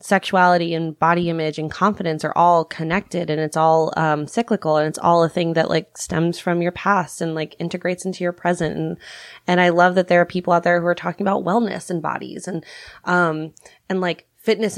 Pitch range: 160-185 Hz